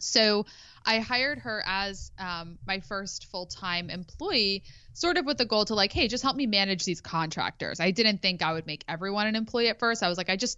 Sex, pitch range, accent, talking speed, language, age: female, 170-210 Hz, American, 225 wpm, English, 20-39